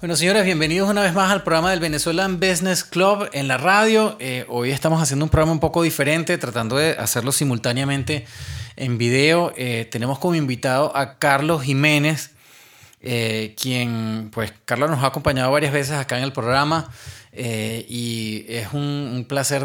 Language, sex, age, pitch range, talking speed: English, male, 30-49, 115-150 Hz, 170 wpm